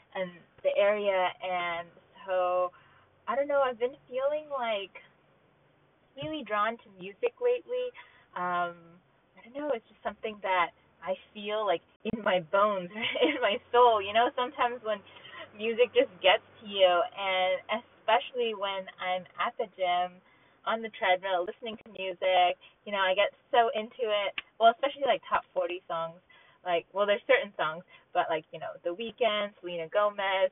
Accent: American